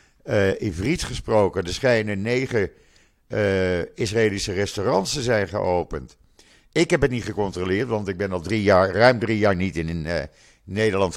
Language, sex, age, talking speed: Dutch, male, 50-69, 165 wpm